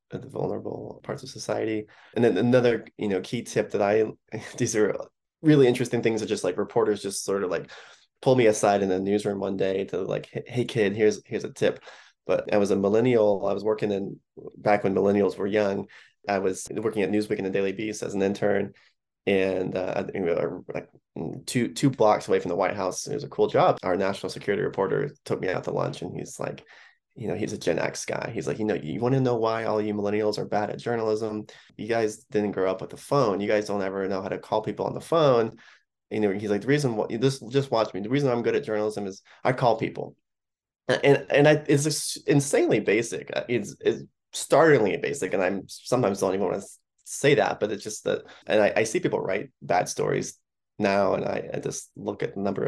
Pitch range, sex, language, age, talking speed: 100-120 Hz, male, English, 20-39, 230 wpm